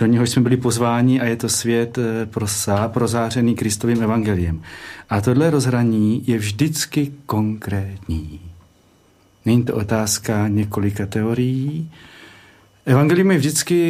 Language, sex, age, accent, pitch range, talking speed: Czech, male, 40-59, native, 110-135 Hz, 115 wpm